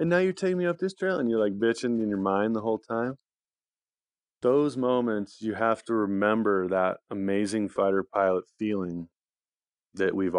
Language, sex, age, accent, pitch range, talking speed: English, male, 30-49, American, 90-105 Hz, 180 wpm